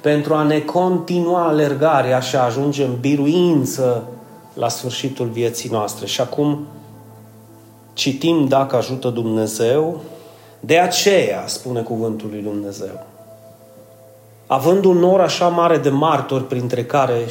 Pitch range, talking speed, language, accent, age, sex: 125-165 Hz, 120 wpm, Romanian, native, 30-49, male